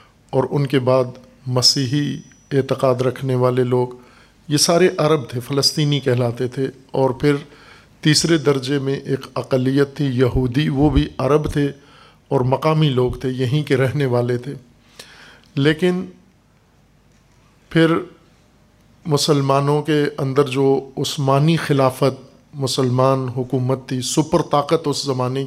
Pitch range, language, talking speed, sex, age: 130-145 Hz, Urdu, 125 wpm, male, 50-69